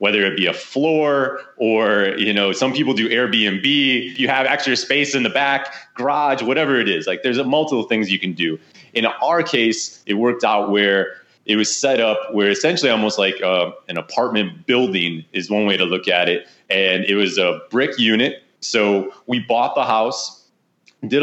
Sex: male